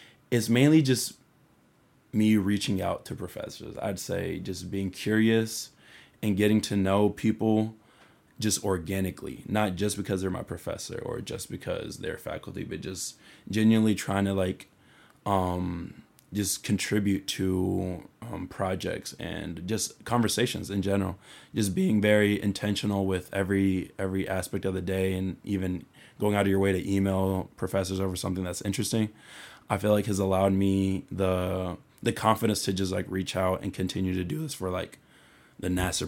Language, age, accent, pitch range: English, 20-39, American, 95-105 Hz